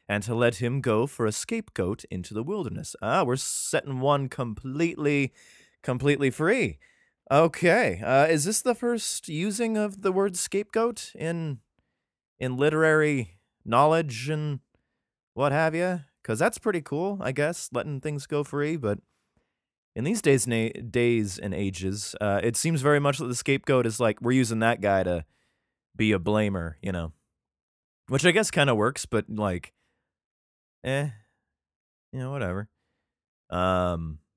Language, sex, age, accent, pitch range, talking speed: English, male, 20-39, American, 105-150 Hz, 155 wpm